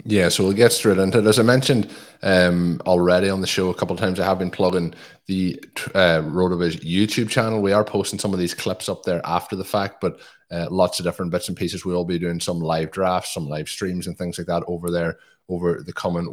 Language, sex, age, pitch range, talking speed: English, male, 20-39, 85-105 Hz, 245 wpm